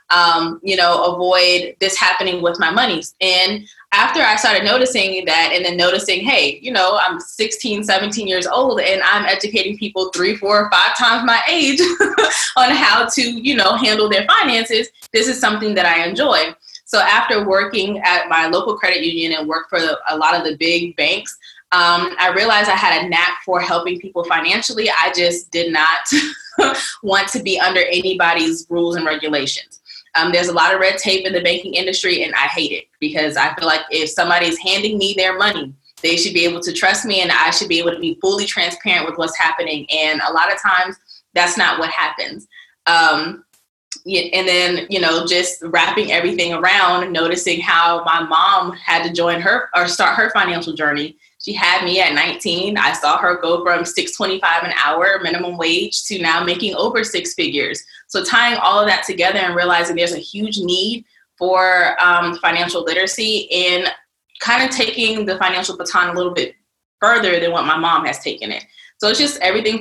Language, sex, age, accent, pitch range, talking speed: English, female, 20-39, American, 170-205 Hz, 195 wpm